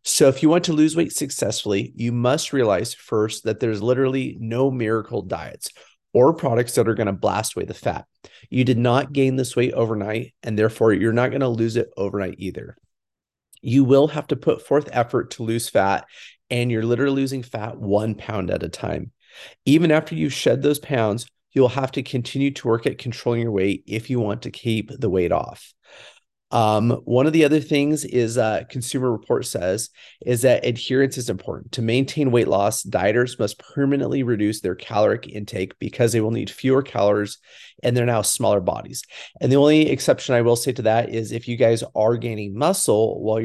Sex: male